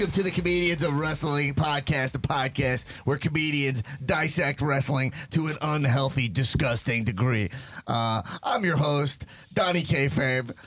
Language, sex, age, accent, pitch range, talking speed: English, male, 30-49, American, 135-180 Hz, 135 wpm